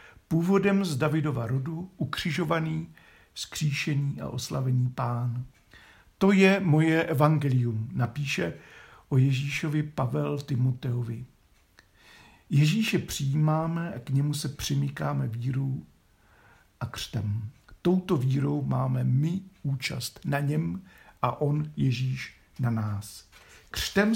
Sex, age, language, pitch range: male, 50-69, Czech, 125-160 Hz